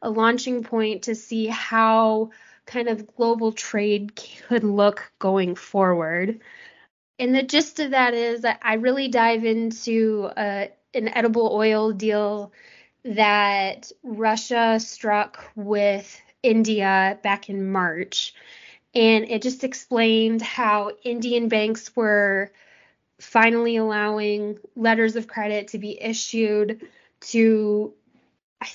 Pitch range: 205-235 Hz